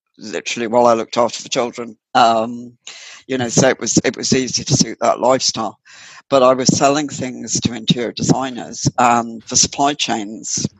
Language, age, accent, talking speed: English, 60-79, British, 185 wpm